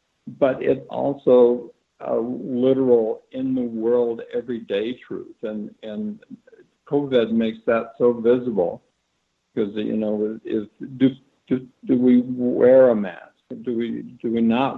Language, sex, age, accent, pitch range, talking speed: English, male, 60-79, American, 110-145 Hz, 140 wpm